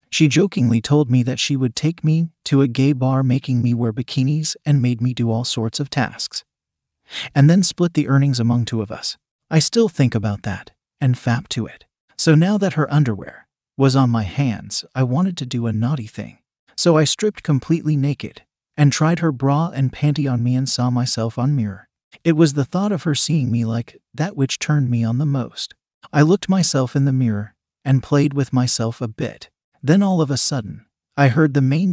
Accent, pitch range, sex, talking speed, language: American, 125-155 Hz, male, 215 wpm, English